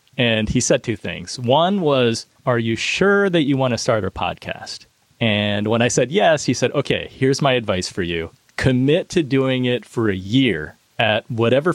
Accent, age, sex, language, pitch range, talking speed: American, 30-49, male, English, 105-135 Hz, 200 wpm